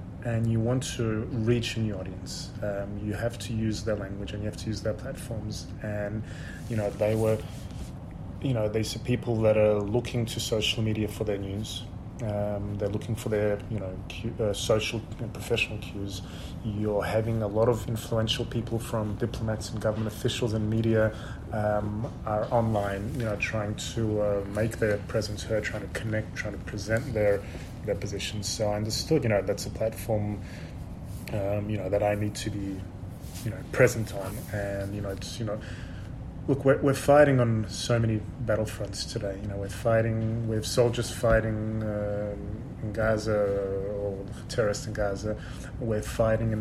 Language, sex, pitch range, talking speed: English, male, 100-115 Hz, 180 wpm